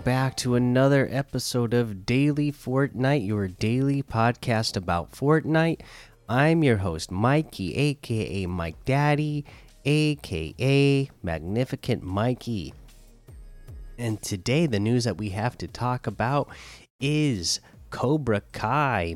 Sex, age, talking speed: male, 30-49, 110 wpm